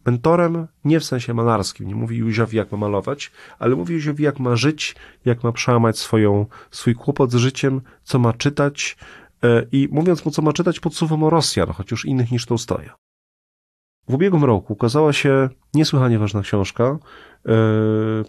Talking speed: 180 wpm